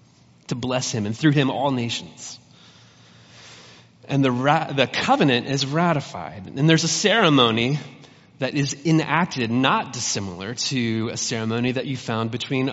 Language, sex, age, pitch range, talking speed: English, male, 30-49, 115-145 Hz, 145 wpm